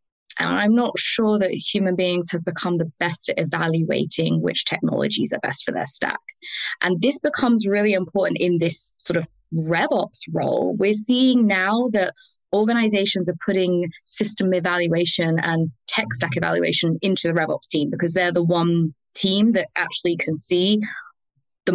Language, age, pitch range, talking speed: English, 20-39, 165-195 Hz, 160 wpm